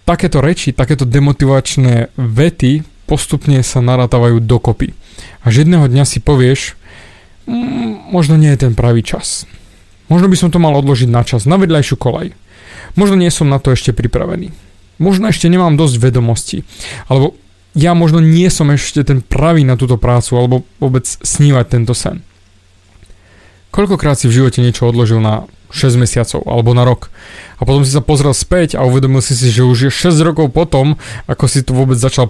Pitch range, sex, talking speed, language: 125-155 Hz, male, 175 wpm, Slovak